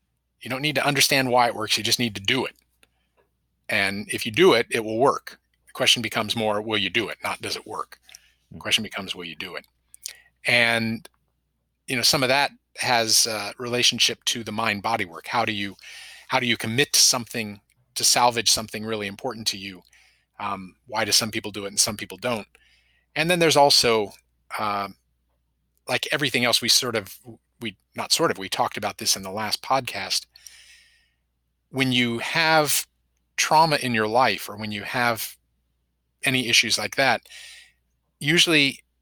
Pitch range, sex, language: 85-120 Hz, male, English